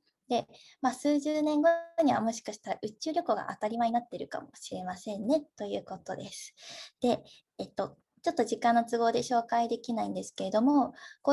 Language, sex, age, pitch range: Japanese, female, 20-39, 220-285 Hz